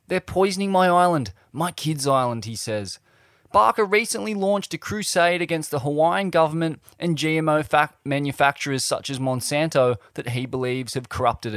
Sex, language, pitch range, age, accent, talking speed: male, English, 130-180 Hz, 20-39, Australian, 150 wpm